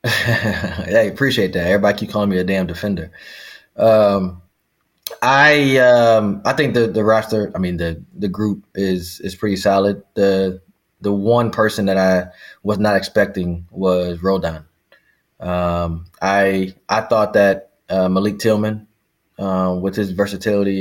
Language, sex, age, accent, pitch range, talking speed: English, male, 20-39, American, 100-125 Hz, 145 wpm